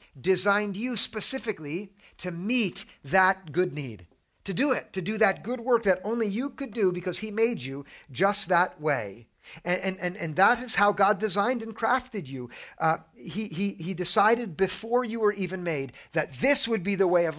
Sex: male